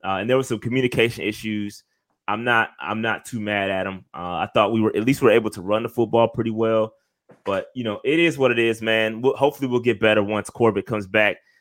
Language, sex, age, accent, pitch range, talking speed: English, male, 20-39, American, 105-125 Hz, 255 wpm